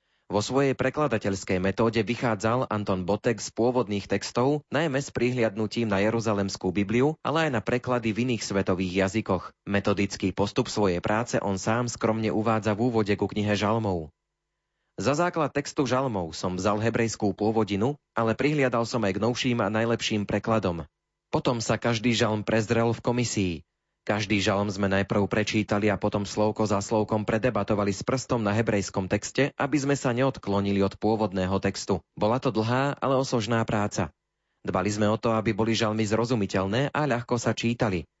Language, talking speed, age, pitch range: Slovak, 160 wpm, 30-49, 100-125 Hz